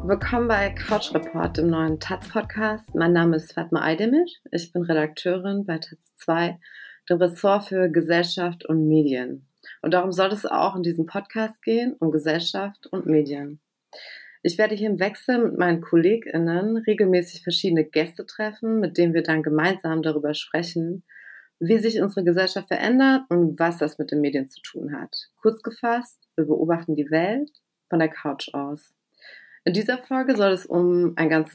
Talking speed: 165 wpm